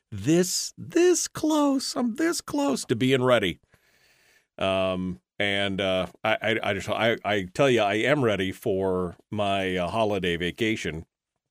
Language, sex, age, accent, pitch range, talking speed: English, male, 40-59, American, 95-125 Hz, 140 wpm